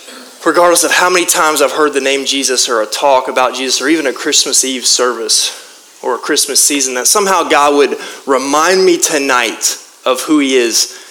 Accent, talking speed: American, 195 wpm